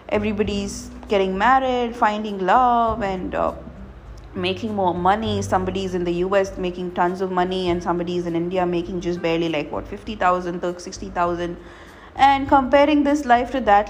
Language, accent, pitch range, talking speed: English, Indian, 185-235 Hz, 150 wpm